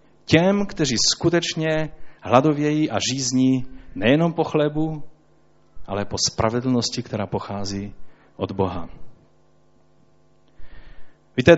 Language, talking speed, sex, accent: Czech, 90 wpm, male, native